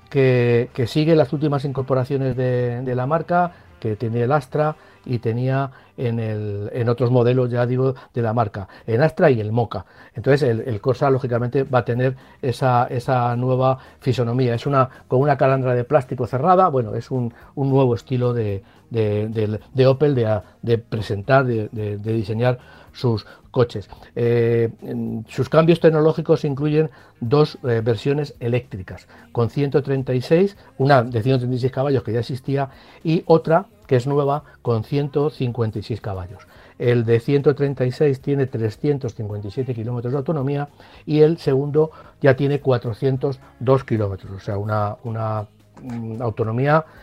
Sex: male